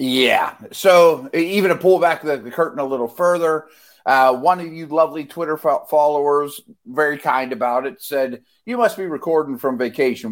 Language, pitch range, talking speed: English, 110-145 Hz, 175 wpm